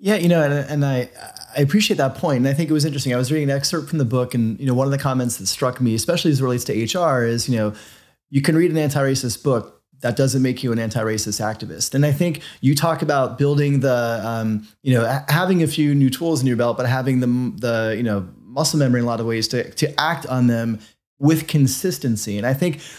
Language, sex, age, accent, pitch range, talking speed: English, male, 30-49, American, 125-150 Hz, 255 wpm